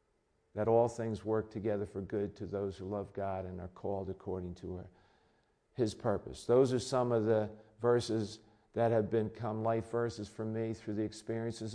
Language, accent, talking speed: English, American, 180 wpm